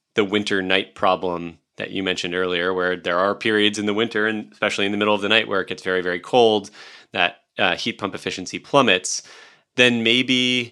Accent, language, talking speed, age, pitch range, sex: American, English, 205 wpm, 30-49, 90-115 Hz, male